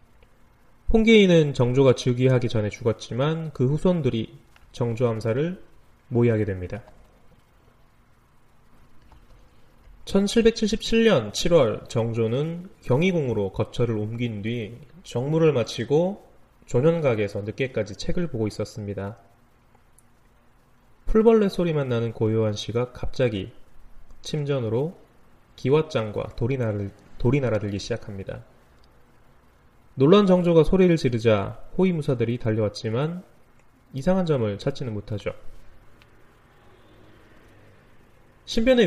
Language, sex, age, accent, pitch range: Korean, male, 20-39, native, 110-150 Hz